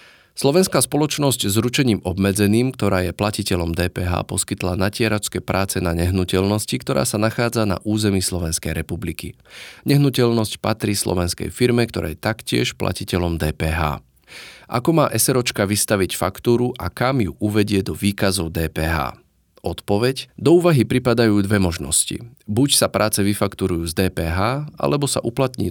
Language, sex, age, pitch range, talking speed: Slovak, male, 30-49, 90-115 Hz, 135 wpm